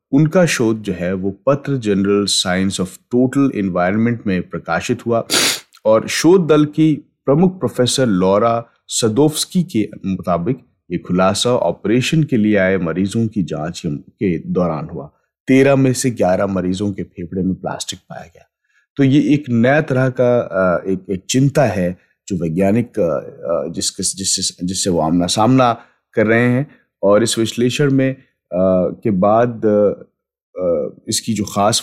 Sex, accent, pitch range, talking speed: male, native, 95-125 Hz, 140 wpm